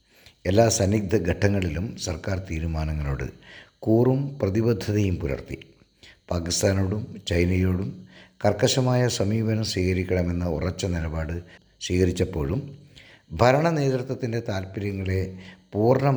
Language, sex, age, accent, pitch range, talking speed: Malayalam, male, 50-69, native, 85-110 Hz, 65 wpm